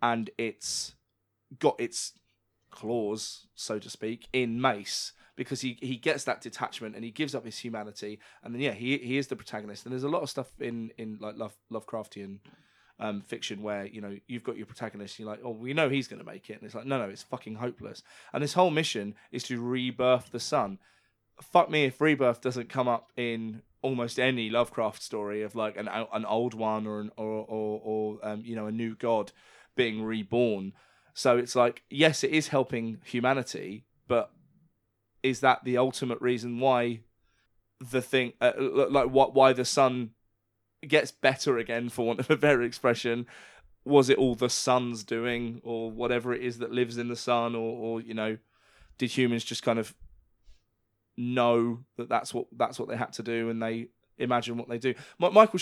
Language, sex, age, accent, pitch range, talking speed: English, male, 20-39, British, 110-130 Hz, 195 wpm